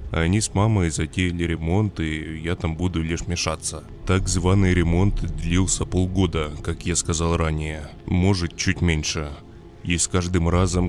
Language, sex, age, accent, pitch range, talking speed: Russian, male, 20-39, native, 85-95 Hz, 150 wpm